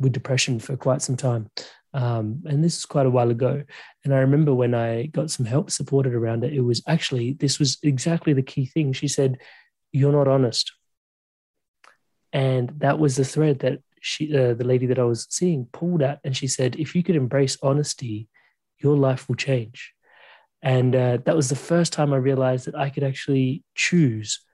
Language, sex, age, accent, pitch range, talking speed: English, male, 30-49, Australian, 125-145 Hz, 200 wpm